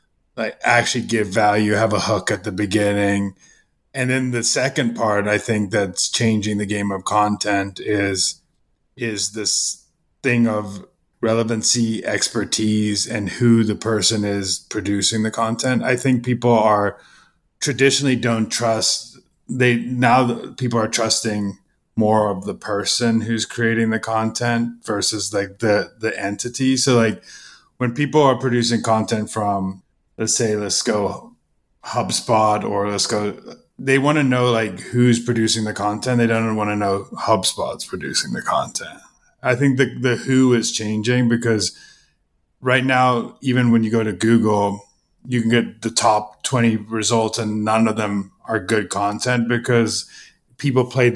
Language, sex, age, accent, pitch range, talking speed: English, male, 30-49, American, 105-120 Hz, 150 wpm